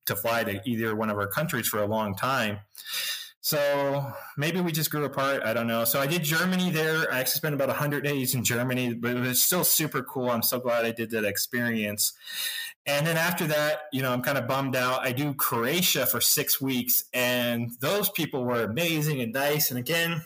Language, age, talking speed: English, 20-39, 215 wpm